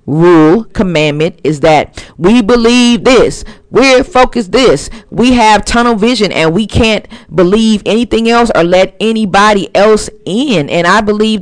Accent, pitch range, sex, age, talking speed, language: American, 150-190 Hz, female, 40-59, 145 wpm, English